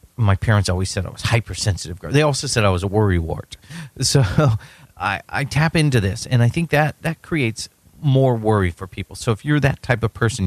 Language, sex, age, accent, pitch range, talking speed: English, male, 40-59, American, 100-140 Hz, 220 wpm